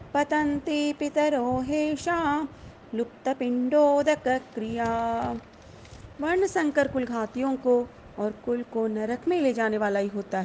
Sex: female